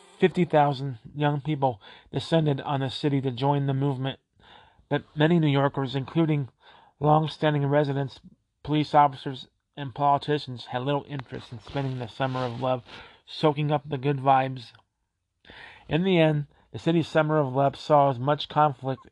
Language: English